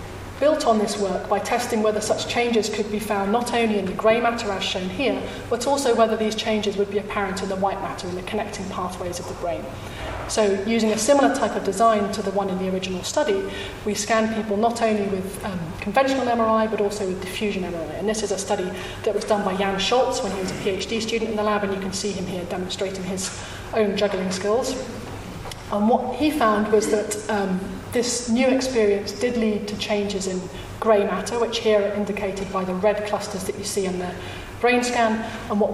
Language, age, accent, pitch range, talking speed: English, 30-49, British, 195-220 Hz, 225 wpm